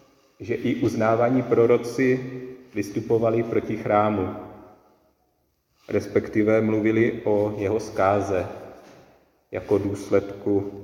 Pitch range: 100-125 Hz